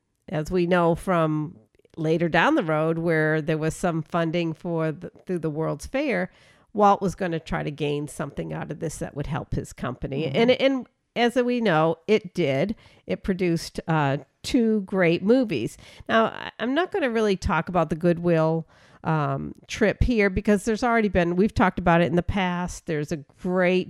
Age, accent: 50-69, American